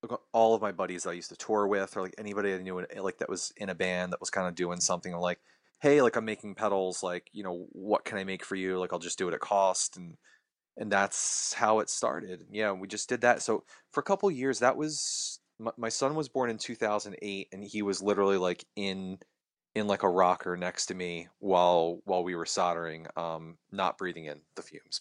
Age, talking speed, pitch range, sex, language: 30-49, 230 wpm, 90-110 Hz, male, English